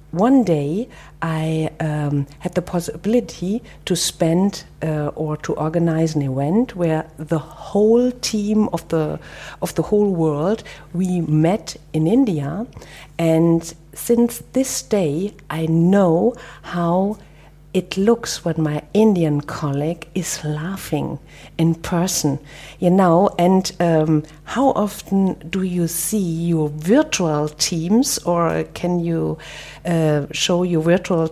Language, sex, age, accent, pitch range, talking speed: German, female, 50-69, German, 165-210 Hz, 125 wpm